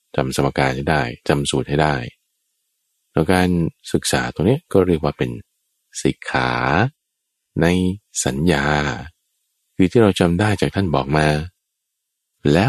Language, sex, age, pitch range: Thai, male, 20-39, 70-100 Hz